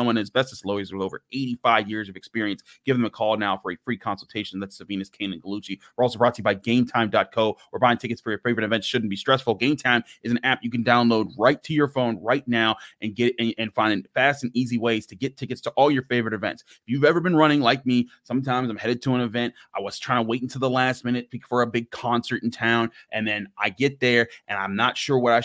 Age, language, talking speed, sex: 30-49, English, 265 wpm, male